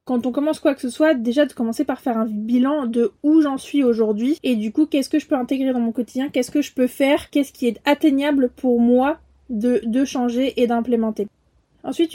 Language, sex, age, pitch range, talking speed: French, female, 20-39, 240-295 Hz, 230 wpm